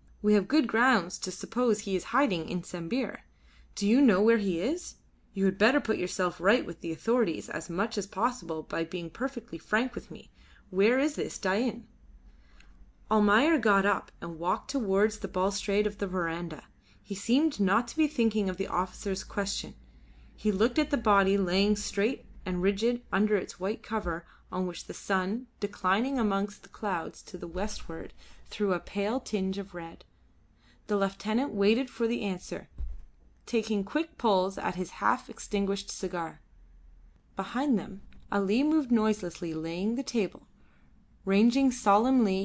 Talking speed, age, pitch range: 160 wpm, 30-49, 180-230 Hz